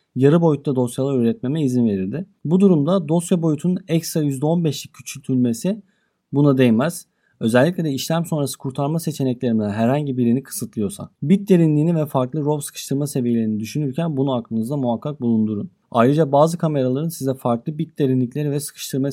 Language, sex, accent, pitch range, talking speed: Turkish, male, native, 125-155 Hz, 140 wpm